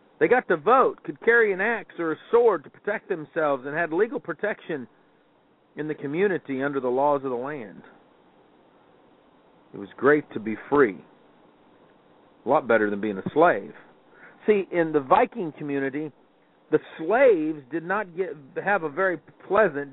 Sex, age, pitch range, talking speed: male, 50-69, 135-190 Hz, 165 wpm